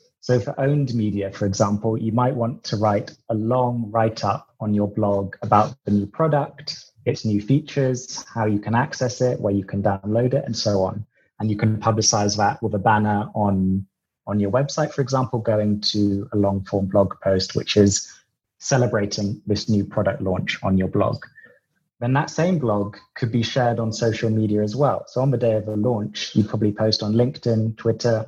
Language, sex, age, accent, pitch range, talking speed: English, male, 20-39, British, 105-120 Hz, 200 wpm